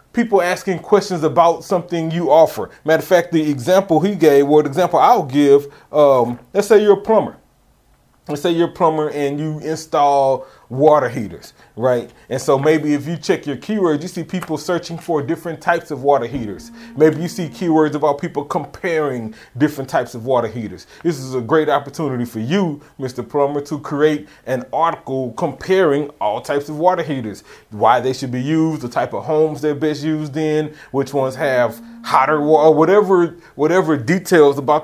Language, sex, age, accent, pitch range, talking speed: English, male, 30-49, American, 130-170 Hz, 185 wpm